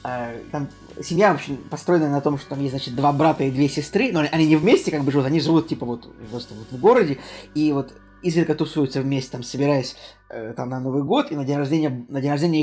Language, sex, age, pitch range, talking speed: Russian, male, 20-39, 125-150 Hz, 245 wpm